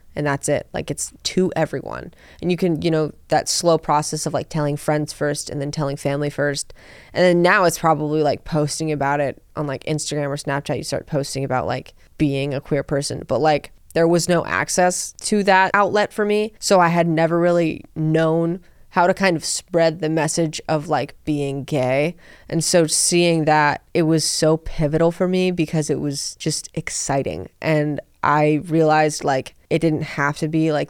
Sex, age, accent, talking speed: female, 20-39, American, 195 wpm